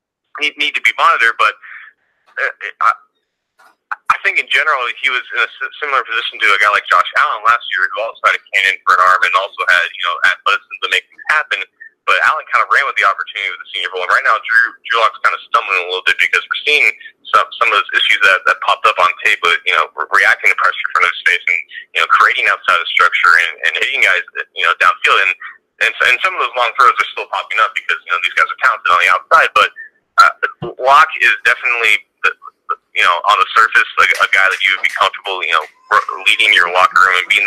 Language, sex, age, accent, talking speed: English, male, 30-49, American, 240 wpm